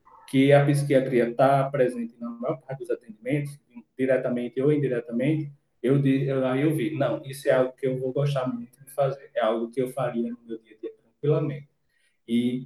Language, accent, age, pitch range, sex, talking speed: Portuguese, Brazilian, 20-39, 120-150 Hz, male, 190 wpm